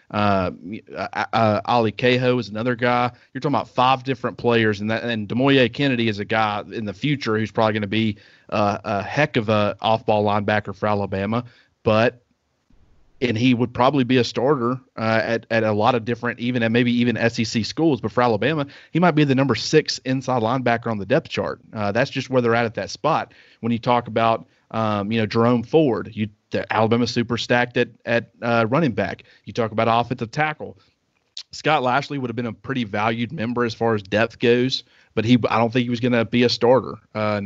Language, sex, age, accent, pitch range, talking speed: English, male, 30-49, American, 110-125 Hz, 215 wpm